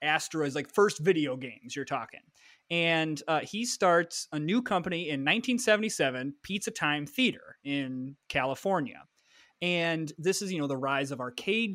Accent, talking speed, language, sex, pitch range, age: American, 155 wpm, English, male, 150-205 Hz, 20-39